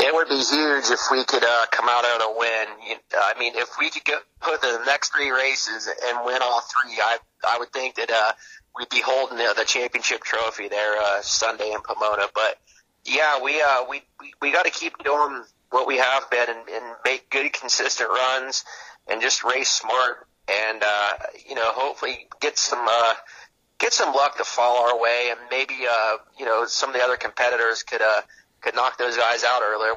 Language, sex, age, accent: English, male, 30-49, American